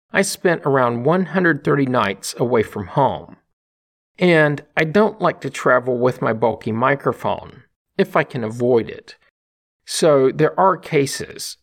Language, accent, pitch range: English, American, 115-165 Hz